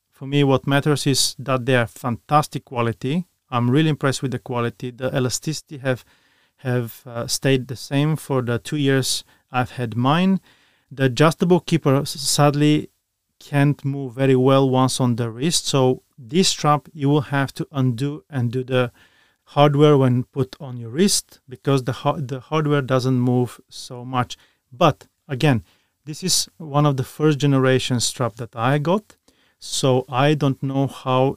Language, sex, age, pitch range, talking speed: English, male, 30-49, 125-150 Hz, 165 wpm